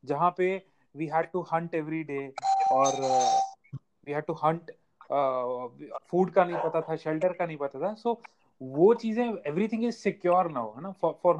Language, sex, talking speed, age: Hindi, male, 135 wpm, 30-49